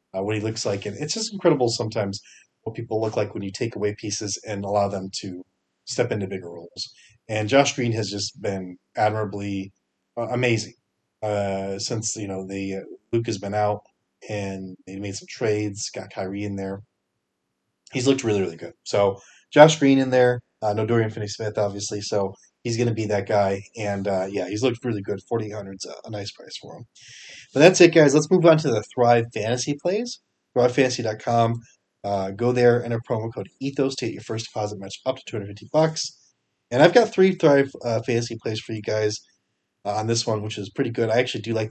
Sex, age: male, 30-49